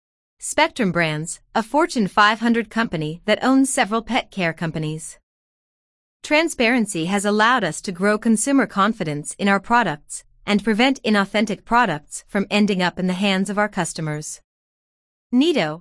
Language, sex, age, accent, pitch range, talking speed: English, female, 30-49, American, 170-245 Hz, 140 wpm